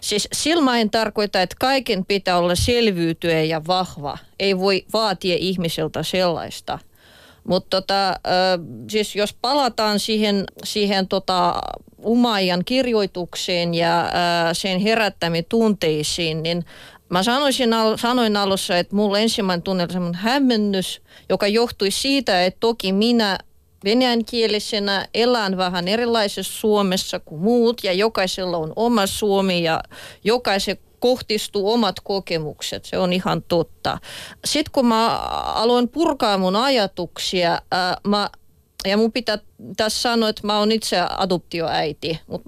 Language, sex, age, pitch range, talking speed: Finnish, female, 30-49, 180-225 Hz, 125 wpm